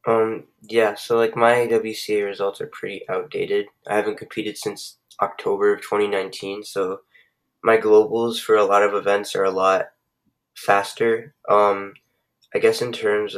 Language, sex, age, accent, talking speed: English, male, 10-29, American, 150 wpm